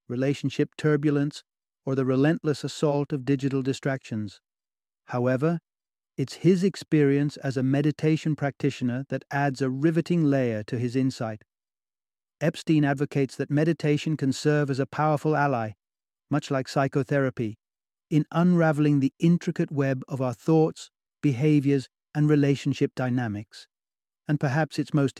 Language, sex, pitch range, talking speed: English, male, 130-150 Hz, 130 wpm